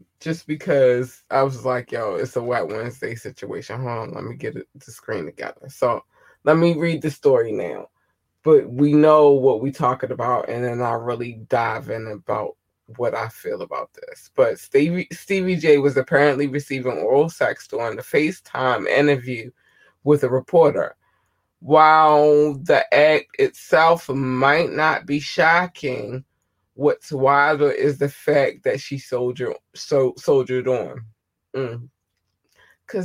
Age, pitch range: 20-39, 125-155 Hz